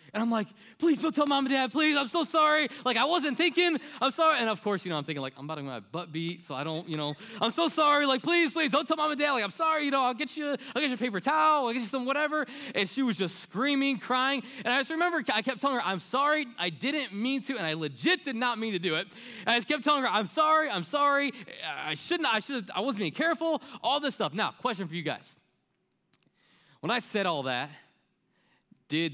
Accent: American